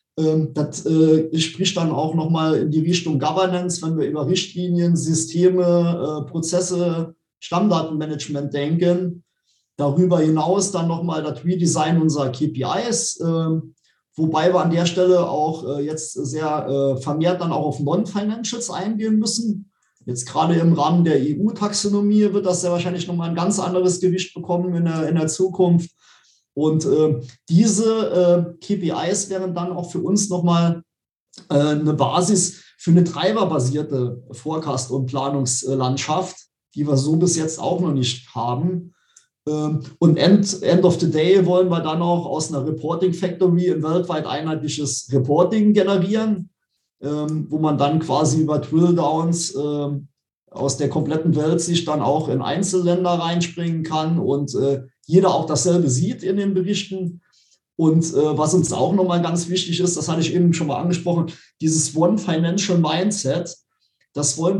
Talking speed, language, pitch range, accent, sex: 145 wpm, German, 155-180 Hz, German, male